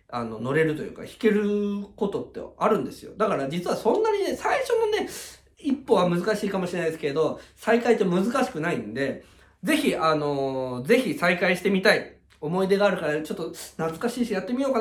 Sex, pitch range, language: male, 130-210 Hz, Japanese